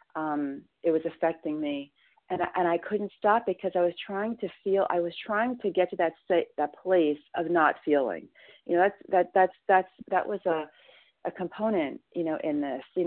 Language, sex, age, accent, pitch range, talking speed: English, female, 40-59, American, 155-185 Hz, 200 wpm